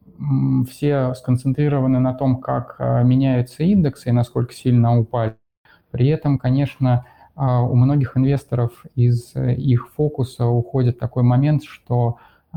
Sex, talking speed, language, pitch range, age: male, 115 wpm, Russian, 120-135 Hz, 20-39